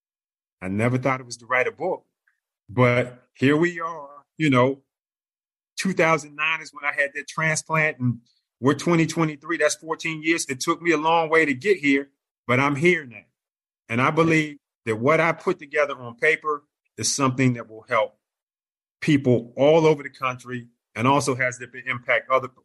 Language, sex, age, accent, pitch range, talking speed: English, male, 30-49, American, 125-155 Hz, 180 wpm